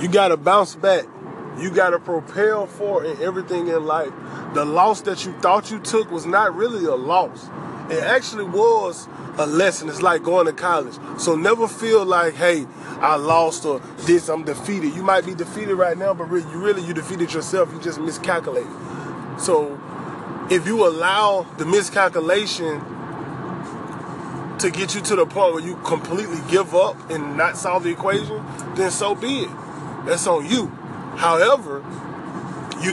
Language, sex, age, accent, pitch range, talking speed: English, male, 20-39, American, 160-195 Hz, 165 wpm